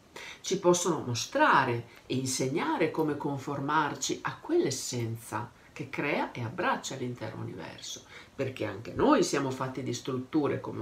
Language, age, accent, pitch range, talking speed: Italian, 50-69, native, 125-170 Hz, 130 wpm